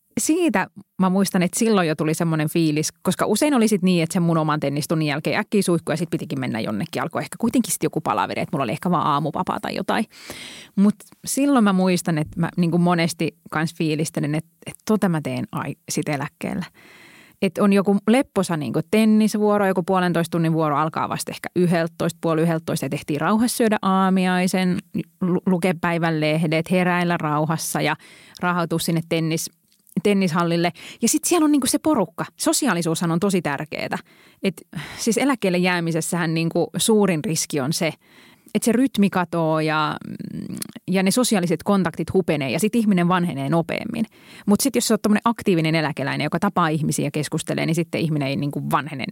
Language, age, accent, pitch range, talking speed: Finnish, 30-49, native, 165-215 Hz, 180 wpm